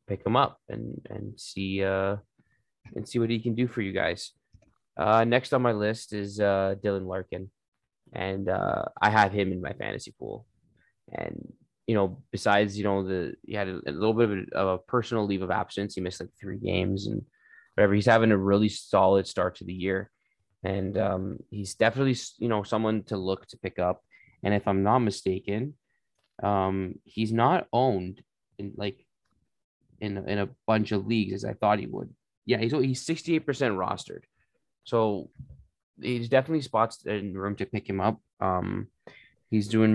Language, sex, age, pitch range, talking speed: English, male, 20-39, 95-115 Hz, 190 wpm